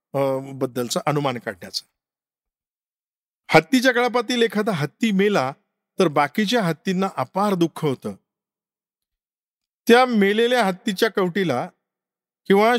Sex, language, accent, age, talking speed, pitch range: male, Marathi, native, 50-69, 90 wpm, 145-205 Hz